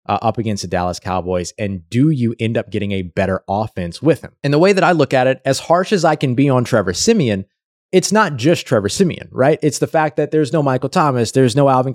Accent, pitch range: American, 110-150 Hz